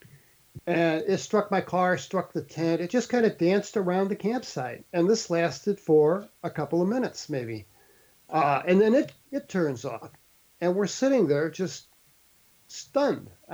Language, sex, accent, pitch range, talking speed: English, male, American, 160-205 Hz, 170 wpm